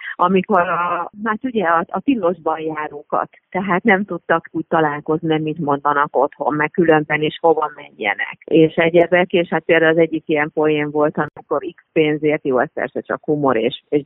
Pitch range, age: 150-185 Hz, 30-49